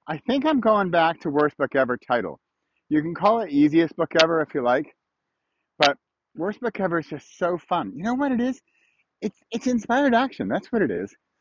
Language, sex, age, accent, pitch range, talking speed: English, male, 30-49, American, 150-220 Hz, 215 wpm